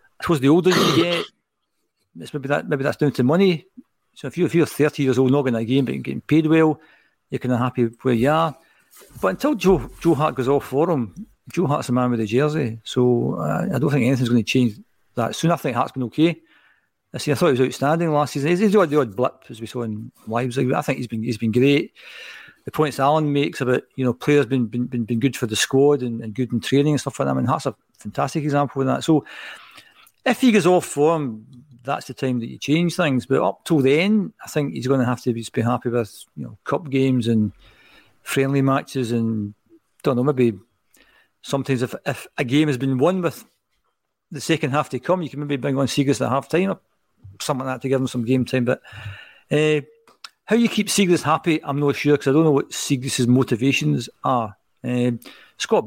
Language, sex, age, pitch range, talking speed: English, male, 50-69, 125-155 Hz, 235 wpm